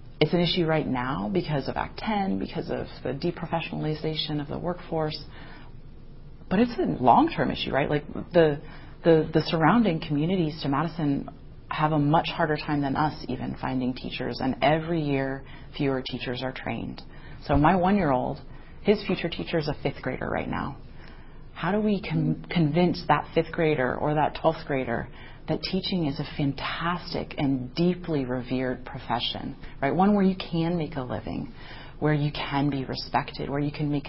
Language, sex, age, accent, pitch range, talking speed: English, female, 30-49, American, 135-170 Hz, 170 wpm